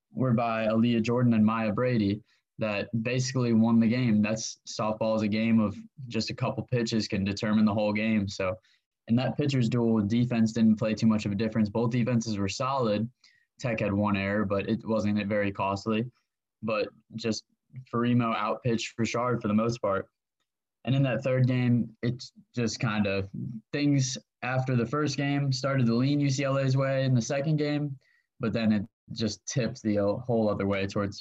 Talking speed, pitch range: 185 wpm, 105-120 Hz